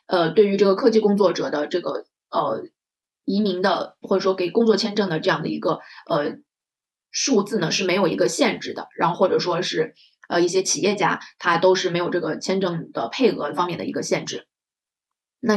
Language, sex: Chinese, female